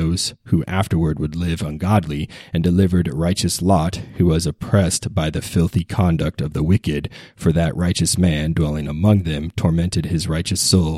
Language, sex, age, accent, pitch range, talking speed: English, male, 30-49, American, 80-95 Hz, 170 wpm